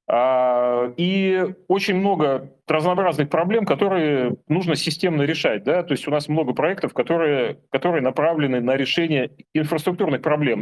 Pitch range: 135-175 Hz